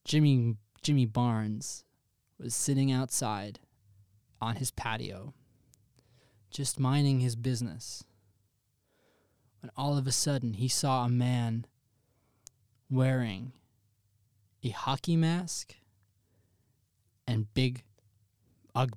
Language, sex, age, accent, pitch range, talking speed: English, male, 20-39, American, 115-155 Hz, 90 wpm